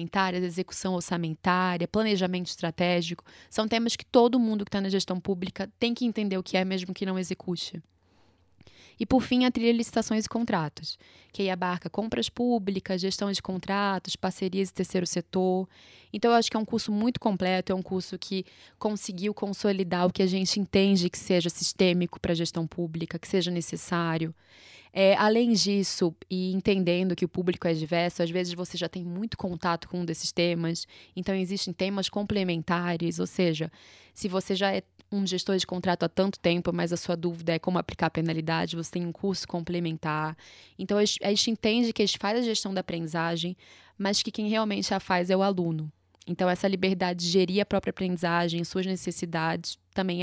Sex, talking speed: female, 190 wpm